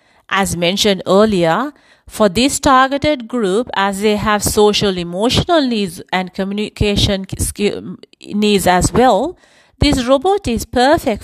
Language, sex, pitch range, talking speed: English, female, 195-245 Hz, 115 wpm